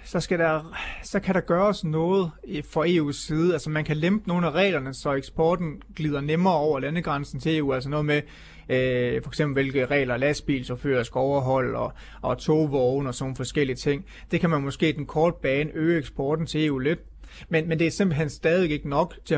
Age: 30-49